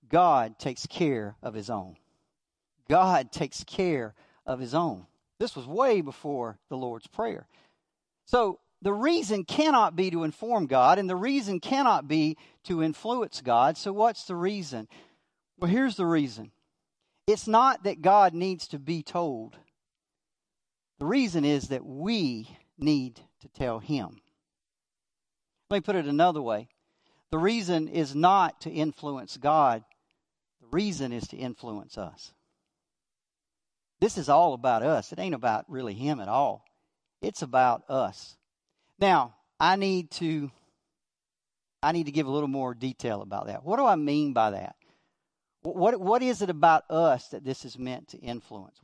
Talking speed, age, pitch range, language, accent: 155 wpm, 50-69, 135-195 Hz, English, American